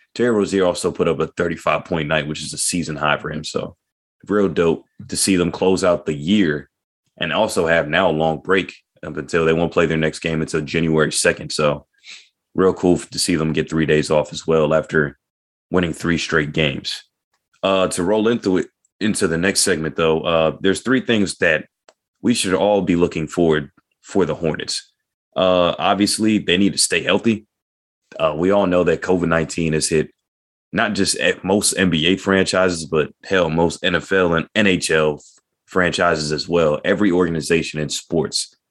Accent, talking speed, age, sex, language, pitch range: American, 185 wpm, 30-49, male, English, 75-90 Hz